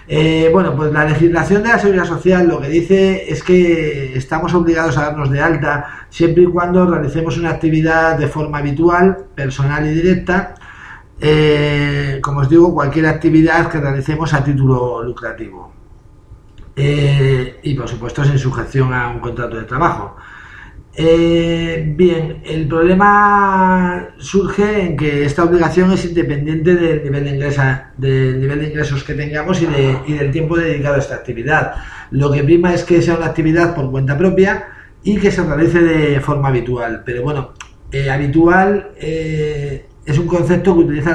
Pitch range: 135-170 Hz